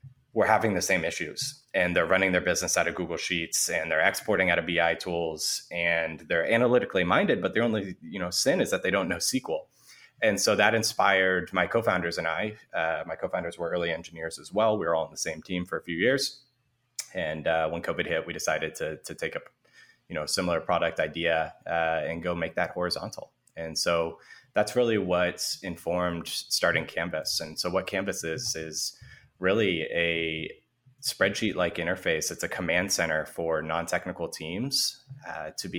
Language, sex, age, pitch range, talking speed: English, male, 20-39, 85-105 Hz, 190 wpm